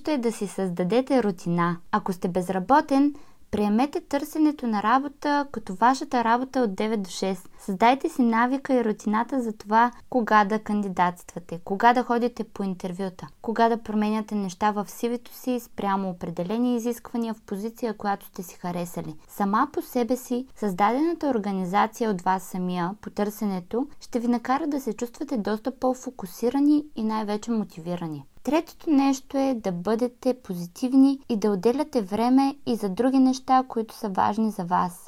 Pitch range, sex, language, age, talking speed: 205-255 Hz, female, Bulgarian, 20-39, 155 wpm